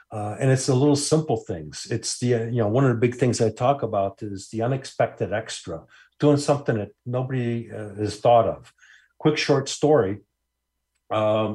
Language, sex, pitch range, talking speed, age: English, male, 105-130 Hz, 185 wpm, 50-69